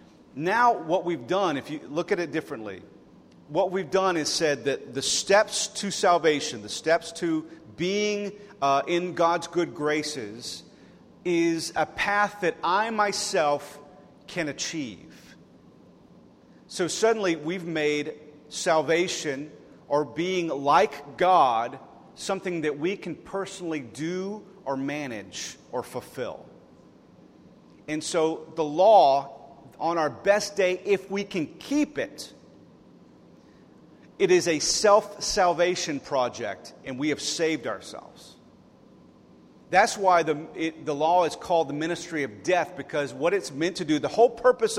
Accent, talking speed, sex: American, 135 wpm, male